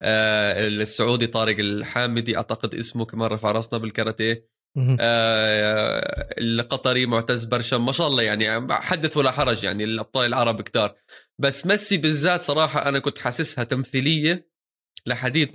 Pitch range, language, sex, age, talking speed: 110-135 Hz, Arabic, male, 20-39, 130 wpm